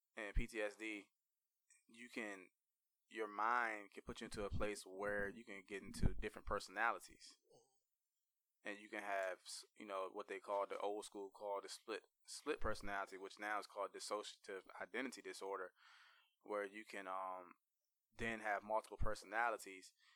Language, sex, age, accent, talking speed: English, male, 20-39, American, 150 wpm